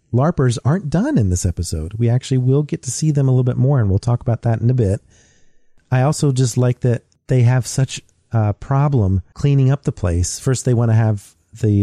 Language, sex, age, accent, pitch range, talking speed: English, male, 40-59, American, 105-130 Hz, 230 wpm